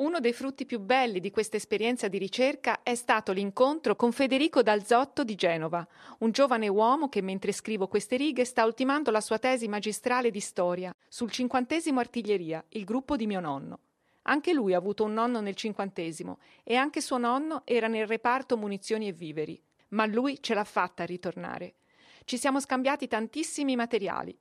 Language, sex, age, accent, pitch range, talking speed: Italian, female, 40-59, native, 200-250 Hz, 175 wpm